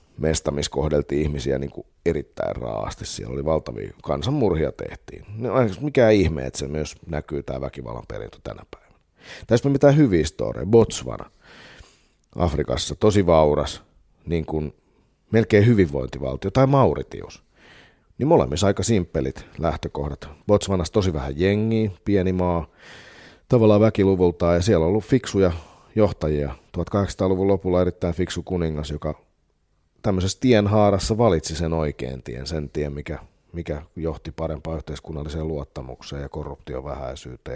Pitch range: 75-95 Hz